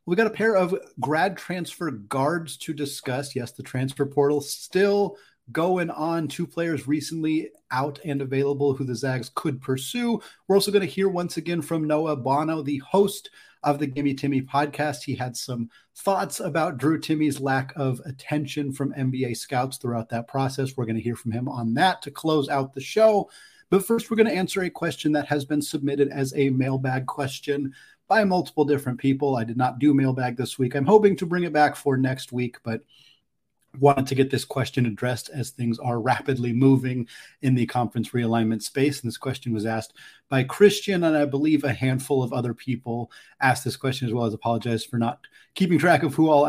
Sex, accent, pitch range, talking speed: male, American, 130-155 Hz, 200 wpm